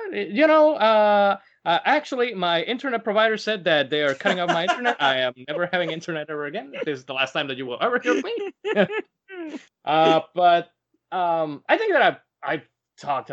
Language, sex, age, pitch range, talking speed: English, male, 20-39, 125-195 Hz, 195 wpm